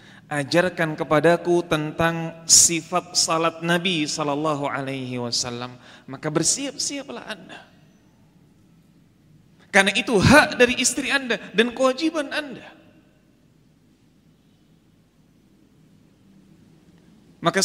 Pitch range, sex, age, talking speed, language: 145-210 Hz, male, 30-49, 75 wpm, Indonesian